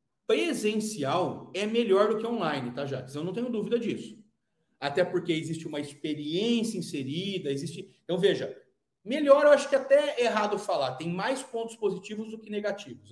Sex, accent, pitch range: male, Brazilian, 160-235 Hz